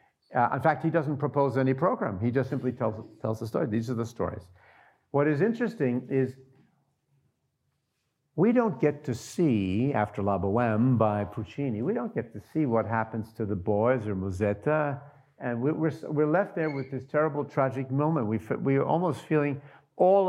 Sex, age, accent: male, 50-69, American